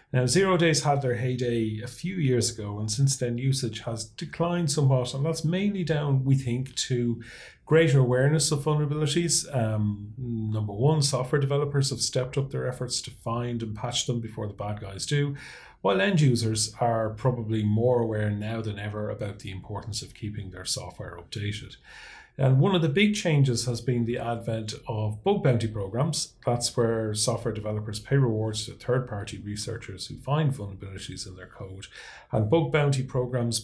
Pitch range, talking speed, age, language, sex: 110-135 Hz, 175 wpm, 30-49, English, male